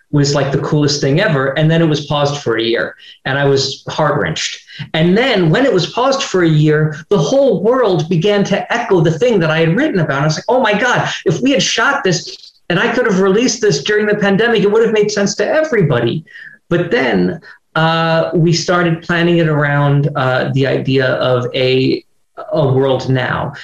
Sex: male